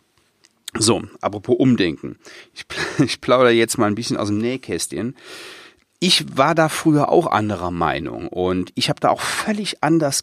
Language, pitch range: German, 100-135 Hz